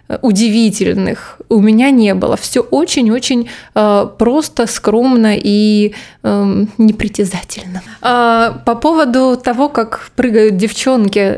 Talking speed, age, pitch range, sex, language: 100 wpm, 20-39, 210-250 Hz, female, Russian